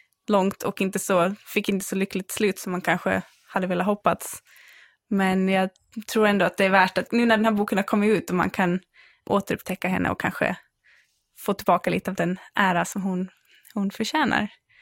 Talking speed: 200 wpm